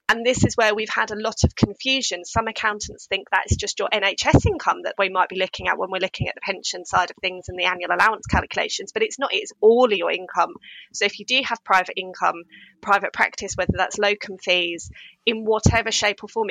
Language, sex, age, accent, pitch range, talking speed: English, female, 20-39, British, 195-225 Hz, 230 wpm